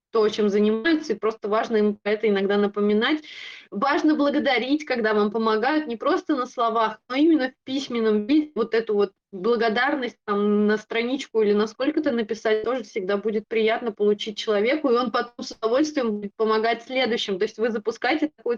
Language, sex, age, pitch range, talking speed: English, female, 20-39, 215-260 Hz, 170 wpm